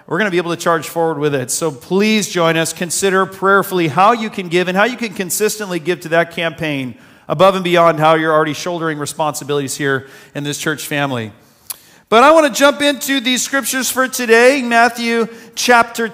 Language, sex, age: English, male, 40-59